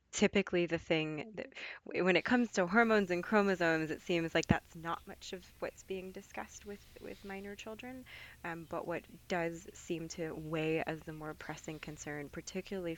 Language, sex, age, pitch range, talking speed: English, female, 20-39, 150-180 Hz, 175 wpm